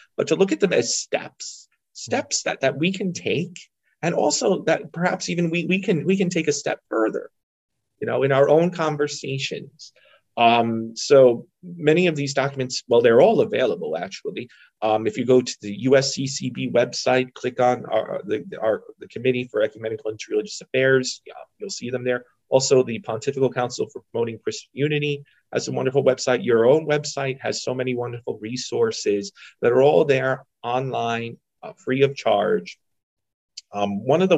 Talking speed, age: 180 wpm, 30-49